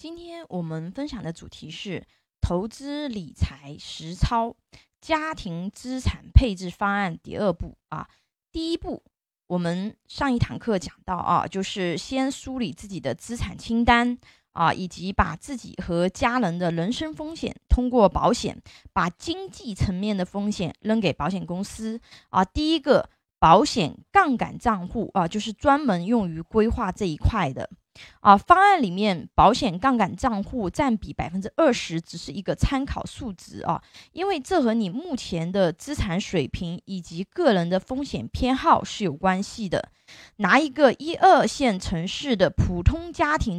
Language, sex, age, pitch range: Chinese, female, 20-39, 180-265 Hz